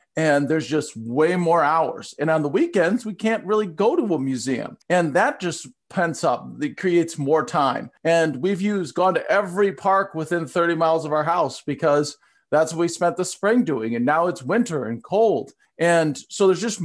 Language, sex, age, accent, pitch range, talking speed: English, male, 40-59, American, 155-200 Hz, 205 wpm